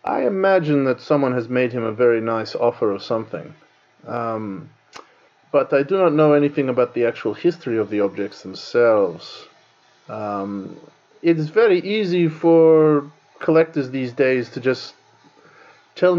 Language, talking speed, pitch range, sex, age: English, 150 wpm, 120-170 Hz, male, 30-49